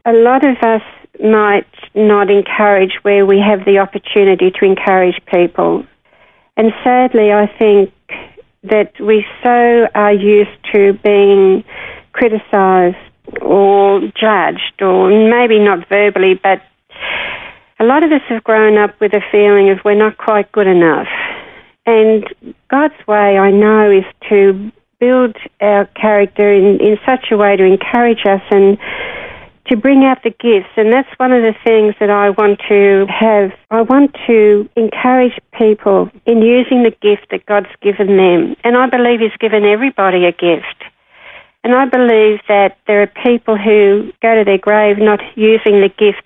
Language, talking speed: English, 160 wpm